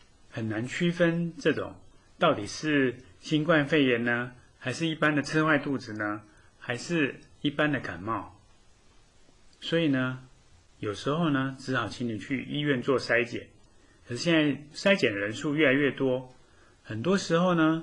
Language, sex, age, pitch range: Chinese, male, 30-49, 115-150 Hz